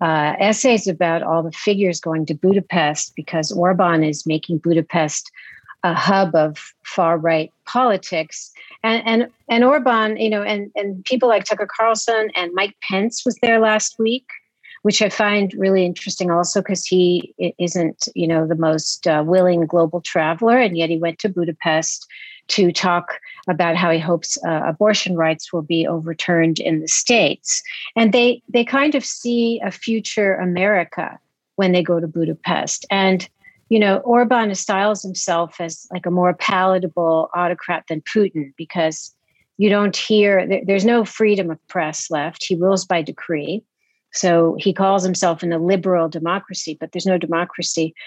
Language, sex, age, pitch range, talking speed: English, female, 50-69, 165-210 Hz, 165 wpm